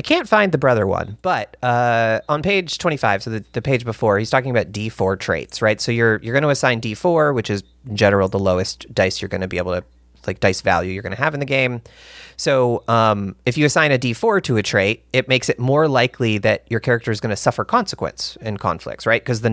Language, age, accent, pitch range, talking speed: English, 30-49, American, 105-140 Hz, 235 wpm